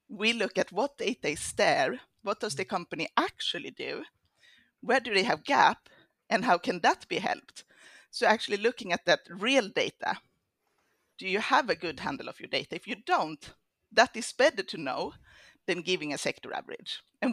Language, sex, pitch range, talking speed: Swedish, female, 180-230 Hz, 185 wpm